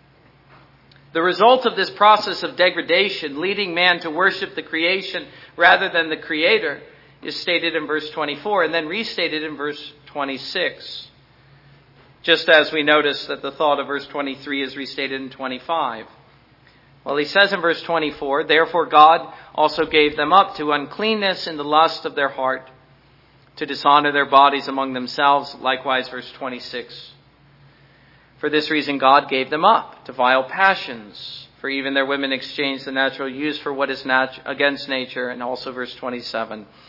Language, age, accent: English, 50-69, American